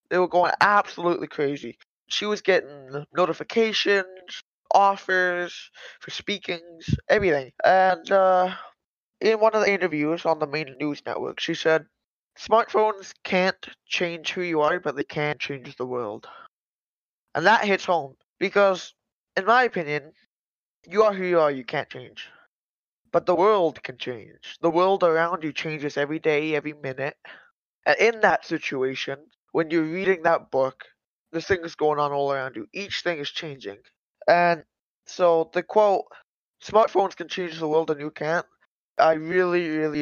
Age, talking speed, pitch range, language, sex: 20-39, 155 wpm, 145-185 Hz, English, male